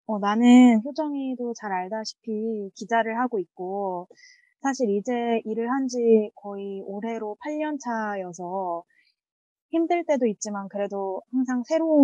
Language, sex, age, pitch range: Korean, female, 20-39, 195-240 Hz